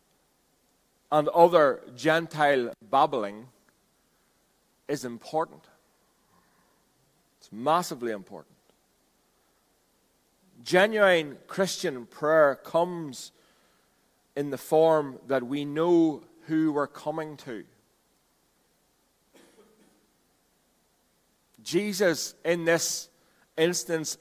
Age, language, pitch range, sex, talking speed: 40-59, English, 135-165 Hz, male, 65 wpm